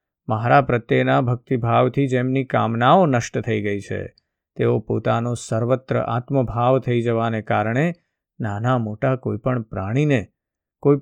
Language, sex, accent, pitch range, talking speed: Gujarati, male, native, 110-130 Hz, 120 wpm